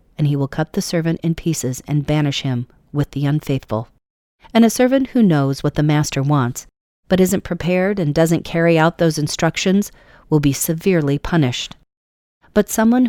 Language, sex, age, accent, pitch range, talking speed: English, female, 40-59, American, 145-180 Hz, 175 wpm